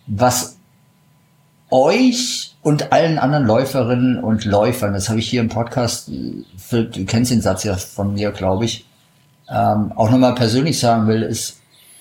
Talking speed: 145 wpm